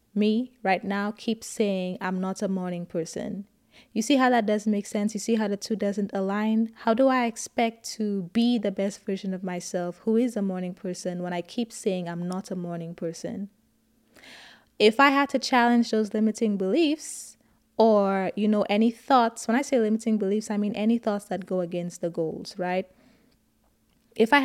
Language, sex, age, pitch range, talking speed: English, female, 20-39, 195-235 Hz, 195 wpm